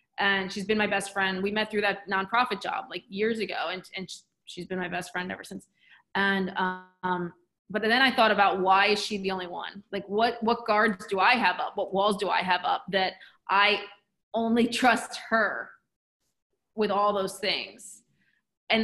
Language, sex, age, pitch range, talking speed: English, female, 20-39, 200-235 Hz, 195 wpm